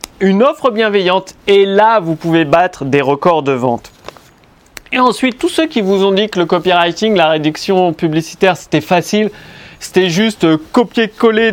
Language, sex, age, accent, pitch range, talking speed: French, male, 30-49, French, 170-230 Hz, 165 wpm